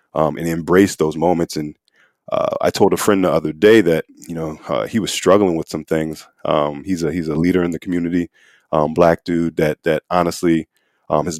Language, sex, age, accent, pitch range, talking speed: English, male, 30-49, American, 80-95 Hz, 215 wpm